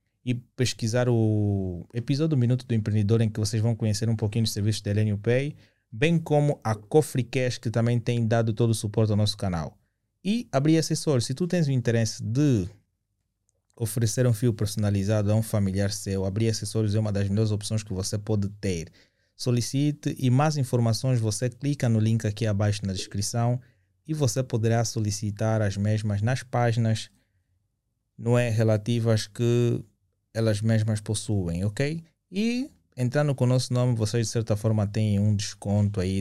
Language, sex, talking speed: Portuguese, male, 170 wpm